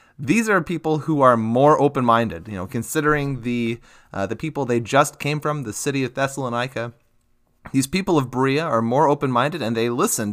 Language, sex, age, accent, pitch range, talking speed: English, male, 30-49, American, 115-145 Hz, 185 wpm